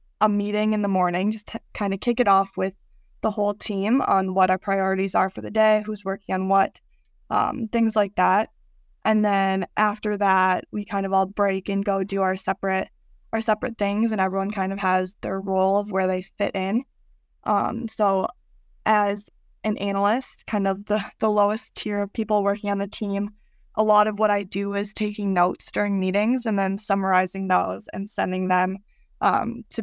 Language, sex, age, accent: English, female, 20-39, American